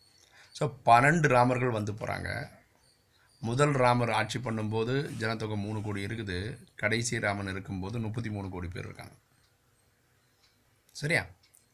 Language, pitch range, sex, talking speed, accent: Tamil, 105-125 Hz, male, 100 wpm, native